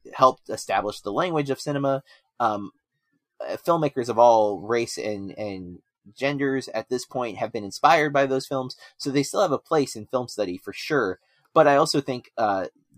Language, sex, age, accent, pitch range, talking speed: English, male, 20-39, American, 115-145 Hz, 180 wpm